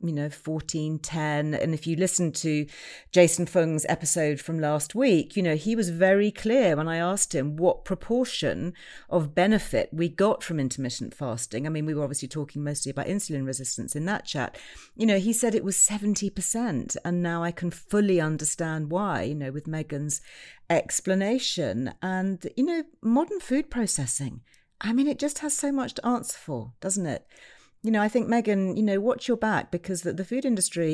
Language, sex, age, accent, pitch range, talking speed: English, female, 40-59, British, 155-220 Hz, 190 wpm